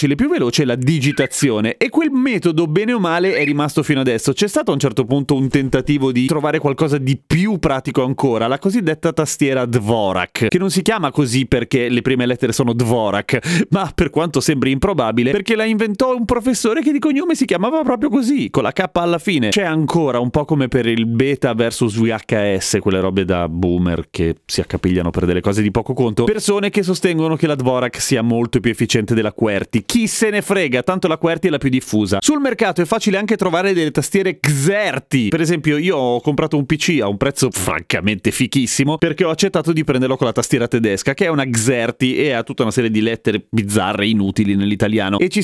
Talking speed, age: 215 wpm, 30-49